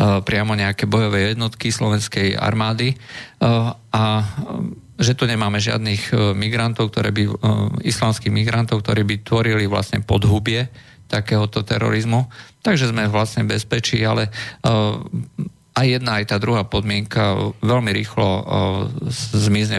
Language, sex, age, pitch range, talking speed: Slovak, male, 40-59, 100-115 Hz, 125 wpm